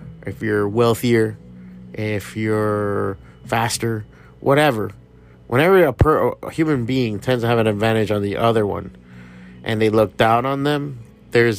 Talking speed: 145 wpm